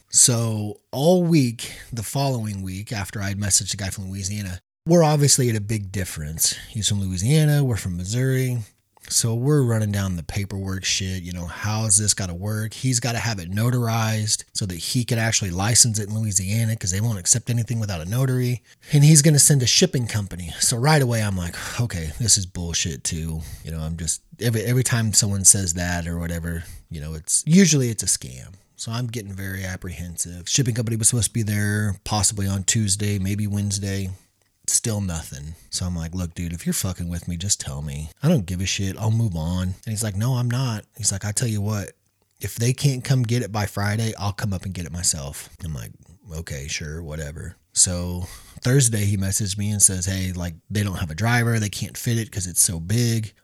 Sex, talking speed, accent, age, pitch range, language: male, 220 wpm, American, 30-49, 90-115 Hz, English